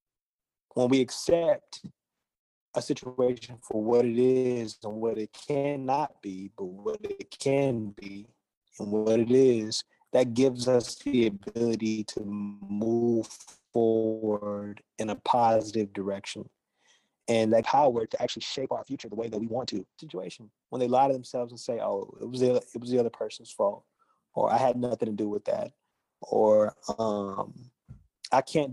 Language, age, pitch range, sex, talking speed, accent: English, 30-49, 110-130 Hz, male, 165 wpm, American